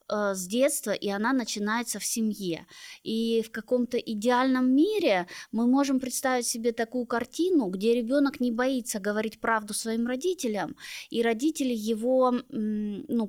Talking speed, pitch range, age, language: 135 wpm, 205-255 Hz, 20-39, Russian